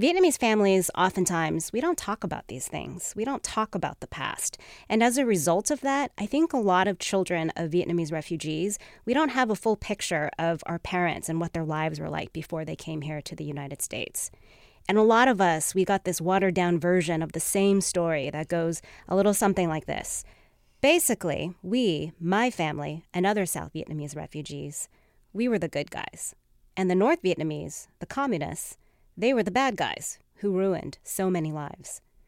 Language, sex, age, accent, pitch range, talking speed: English, female, 30-49, American, 160-205 Hz, 195 wpm